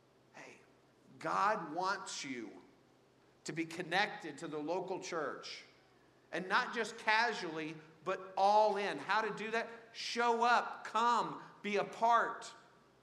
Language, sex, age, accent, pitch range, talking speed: English, male, 50-69, American, 170-225 Hz, 125 wpm